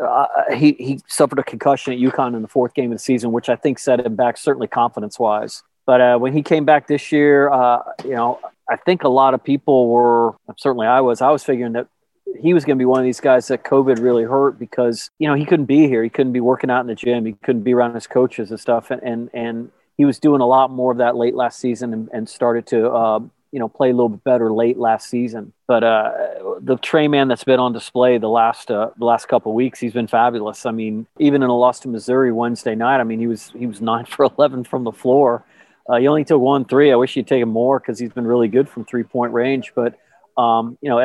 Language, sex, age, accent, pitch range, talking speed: English, male, 30-49, American, 120-140 Hz, 265 wpm